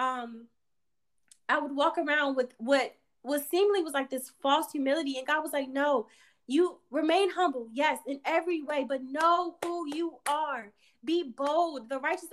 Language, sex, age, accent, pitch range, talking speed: English, female, 20-39, American, 260-325 Hz, 170 wpm